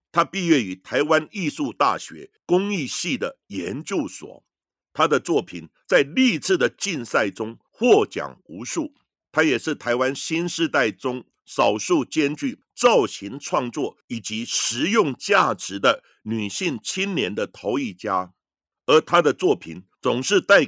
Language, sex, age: Chinese, male, 50-69